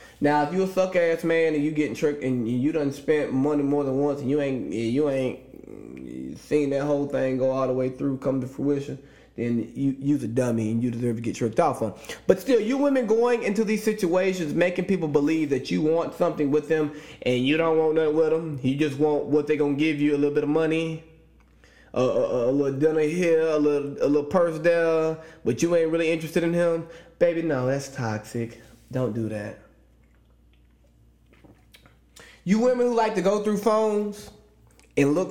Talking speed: 205 wpm